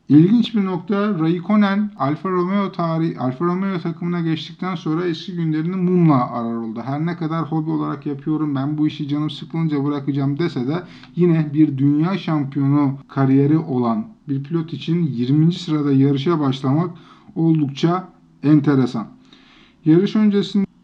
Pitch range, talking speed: 140-175 Hz, 140 wpm